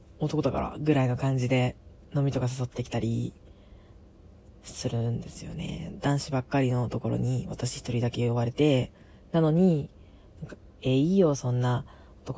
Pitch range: 125-190 Hz